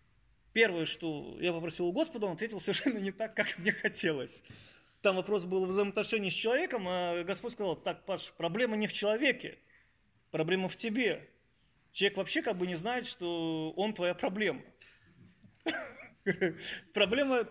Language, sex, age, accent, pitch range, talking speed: Russian, male, 20-39, native, 190-245 Hz, 150 wpm